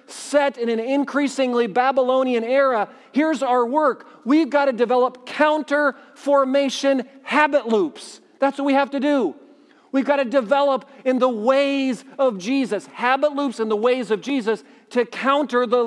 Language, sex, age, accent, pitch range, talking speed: English, male, 40-59, American, 230-270 Hz, 155 wpm